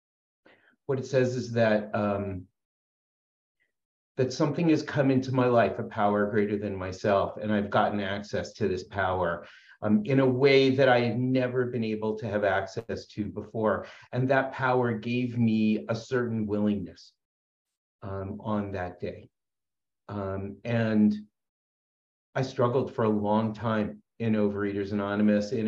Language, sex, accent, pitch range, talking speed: English, male, American, 100-120 Hz, 145 wpm